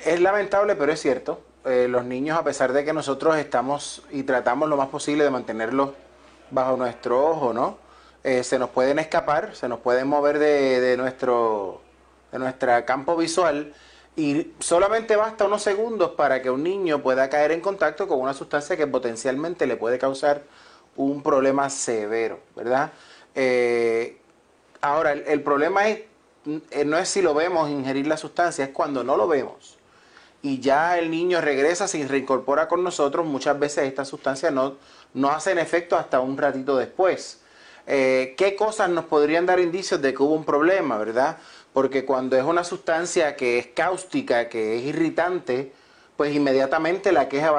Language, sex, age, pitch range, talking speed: Spanish, male, 30-49, 130-165 Hz, 170 wpm